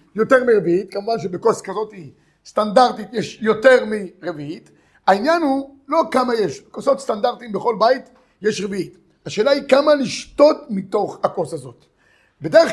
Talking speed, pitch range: 135 wpm, 215-275 Hz